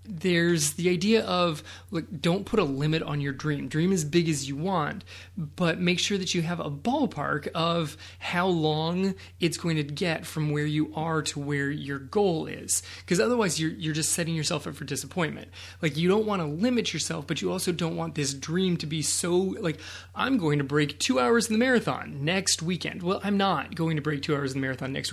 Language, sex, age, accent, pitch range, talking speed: English, male, 30-49, American, 145-175 Hz, 220 wpm